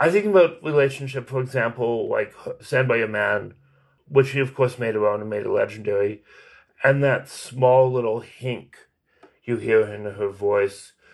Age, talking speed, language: 30-49, 170 wpm, English